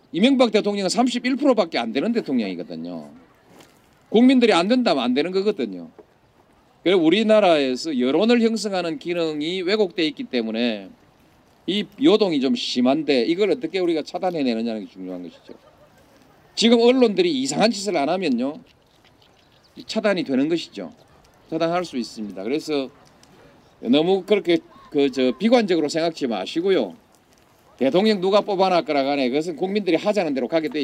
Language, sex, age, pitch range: Korean, male, 40-59, 140-225 Hz